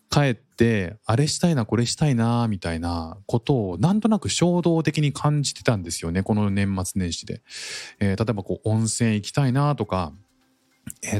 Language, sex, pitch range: Japanese, male, 95-140 Hz